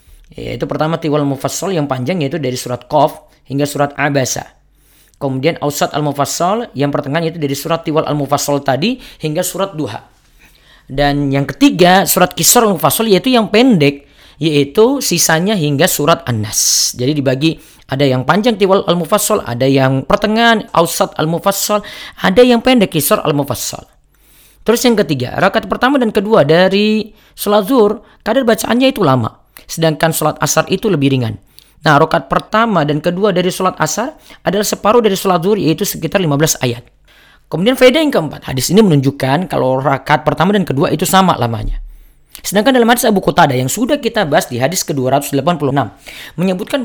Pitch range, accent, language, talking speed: 140-205 Hz, native, Indonesian, 160 wpm